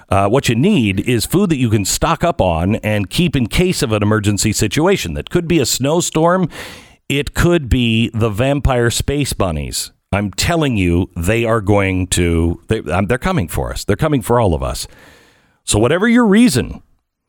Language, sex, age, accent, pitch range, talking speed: English, male, 50-69, American, 100-145 Hz, 185 wpm